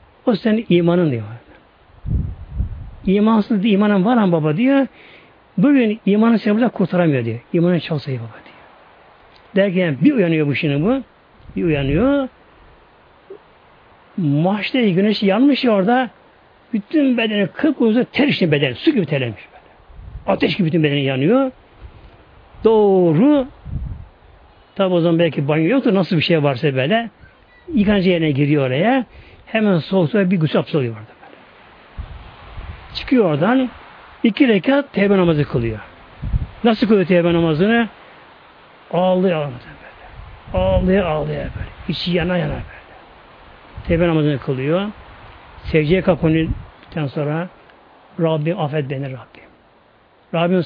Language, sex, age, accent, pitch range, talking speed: Turkish, male, 60-79, native, 145-210 Hz, 125 wpm